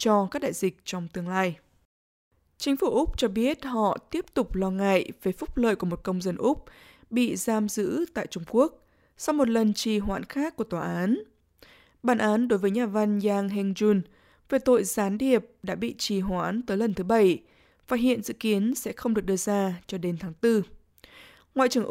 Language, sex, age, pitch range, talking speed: Vietnamese, female, 20-39, 190-245 Hz, 205 wpm